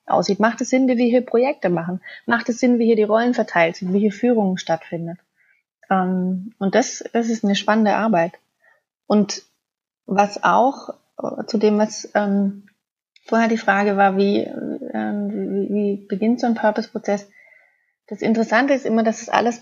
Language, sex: German, female